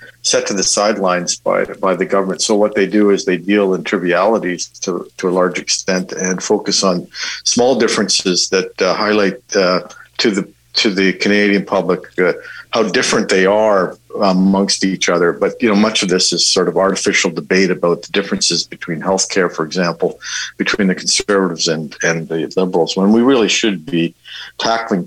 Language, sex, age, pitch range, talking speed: English, male, 50-69, 90-110 Hz, 185 wpm